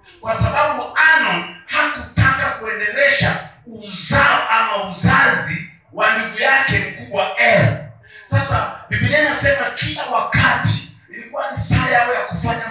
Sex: male